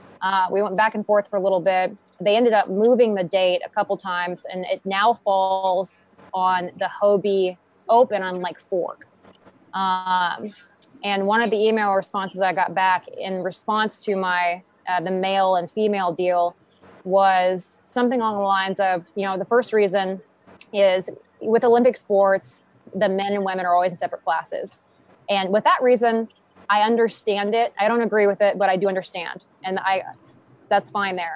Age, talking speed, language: 20-39, 180 wpm, English